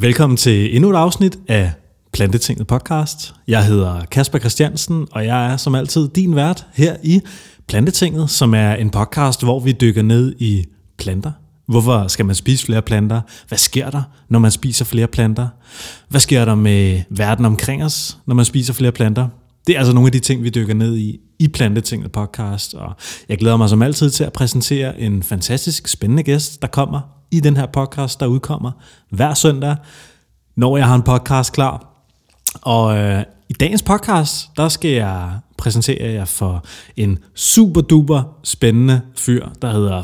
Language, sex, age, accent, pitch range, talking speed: Danish, male, 30-49, native, 110-140 Hz, 180 wpm